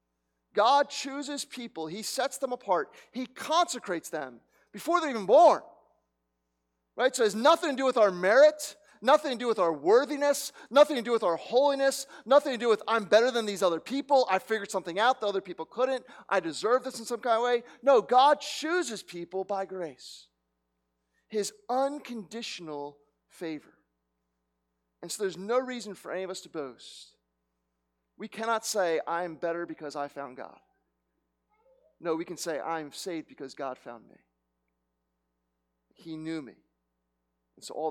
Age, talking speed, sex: 40-59, 175 wpm, male